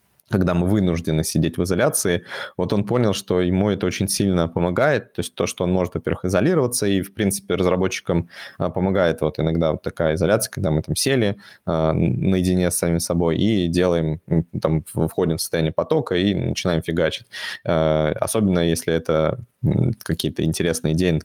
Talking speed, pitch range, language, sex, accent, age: 170 wpm, 85-100 Hz, Russian, male, native, 20-39